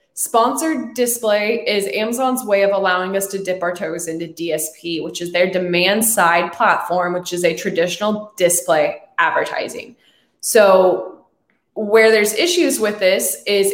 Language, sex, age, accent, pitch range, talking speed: English, female, 20-39, American, 185-220 Hz, 145 wpm